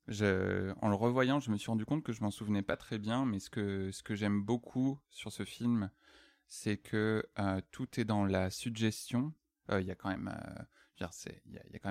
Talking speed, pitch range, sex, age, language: 215 wpm, 95-120 Hz, male, 20-39, French